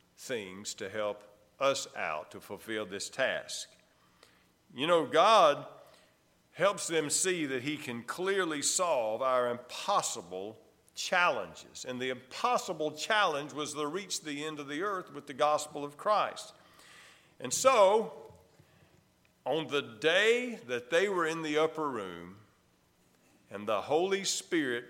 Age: 50-69